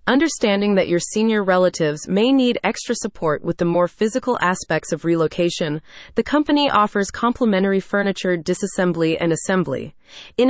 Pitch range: 175-235 Hz